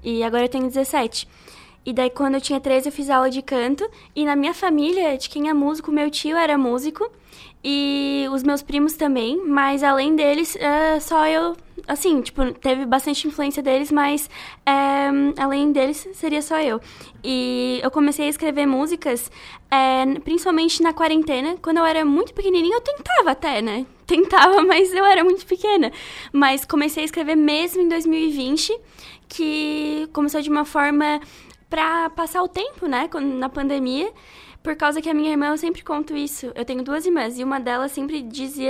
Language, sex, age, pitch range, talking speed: Portuguese, female, 10-29, 270-320 Hz, 175 wpm